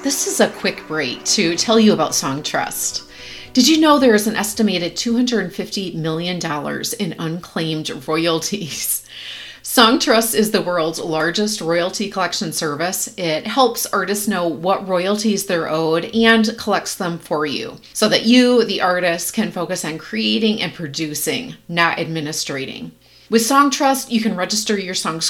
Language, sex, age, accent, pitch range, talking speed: English, female, 30-49, American, 170-225 Hz, 150 wpm